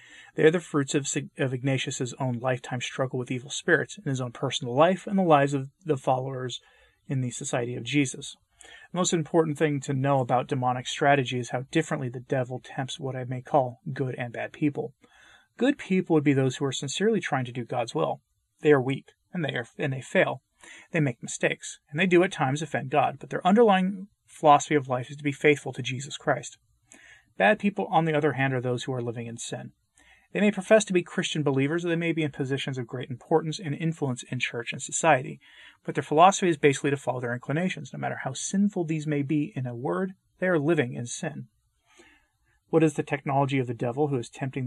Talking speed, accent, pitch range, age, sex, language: 225 wpm, American, 130-160 Hz, 30-49, male, English